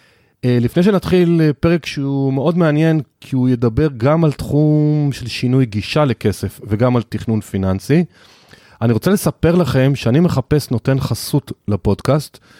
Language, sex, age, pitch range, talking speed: Hebrew, male, 30-49, 105-140 Hz, 140 wpm